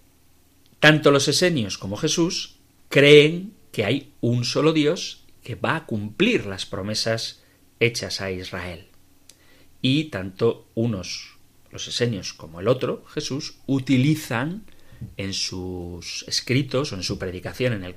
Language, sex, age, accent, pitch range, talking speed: Spanish, male, 40-59, Spanish, 100-140 Hz, 130 wpm